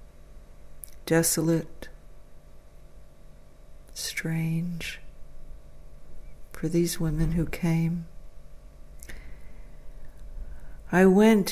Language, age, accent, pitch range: English, 60-79, American, 150-175 Hz